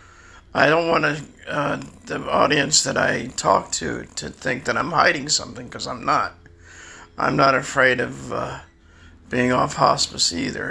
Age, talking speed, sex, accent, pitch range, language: 50-69, 165 wpm, male, American, 85-140 Hz, English